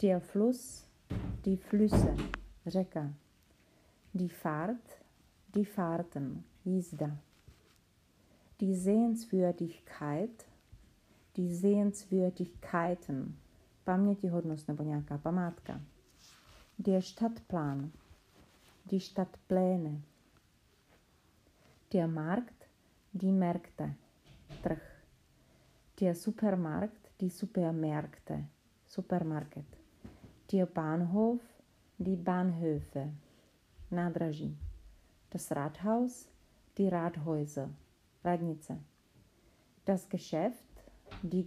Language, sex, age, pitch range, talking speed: Czech, female, 40-59, 150-195 Hz, 65 wpm